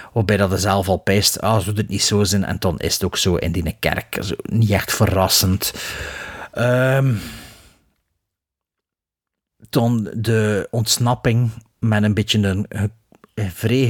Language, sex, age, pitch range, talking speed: Dutch, male, 40-59, 100-135 Hz, 150 wpm